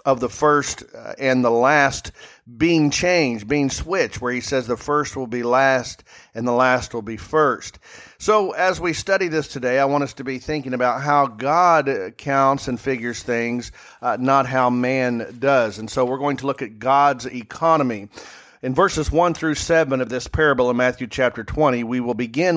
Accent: American